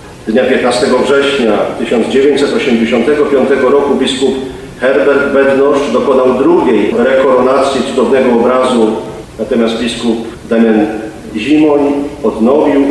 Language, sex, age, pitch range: Polish, male, 40-59, 115-145 Hz